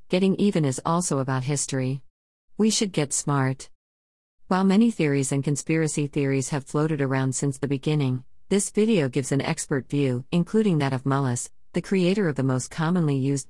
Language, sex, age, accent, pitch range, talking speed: English, female, 50-69, American, 135-165 Hz, 175 wpm